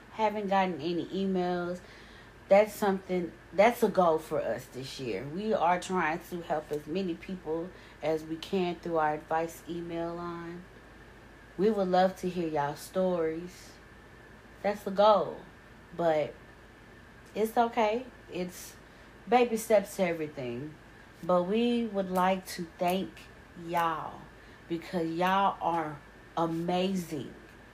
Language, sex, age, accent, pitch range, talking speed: English, female, 30-49, American, 160-200 Hz, 130 wpm